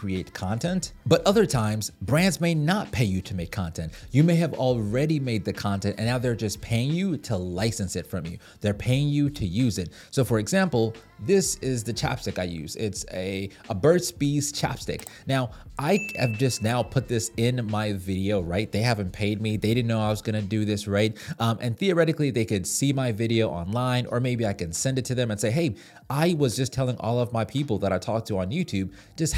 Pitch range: 100-130 Hz